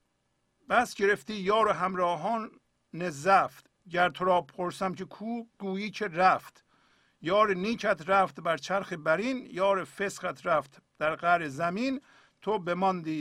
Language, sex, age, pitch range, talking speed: Persian, male, 50-69, 140-195 Hz, 125 wpm